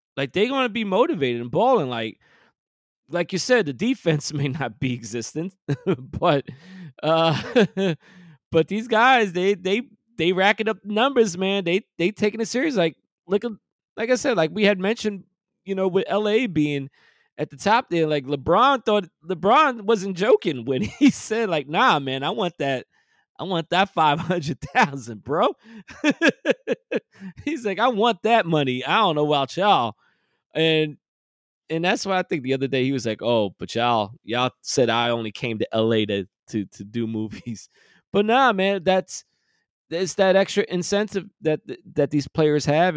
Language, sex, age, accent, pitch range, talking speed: English, male, 20-39, American, 135-200 Hz, 175 wpm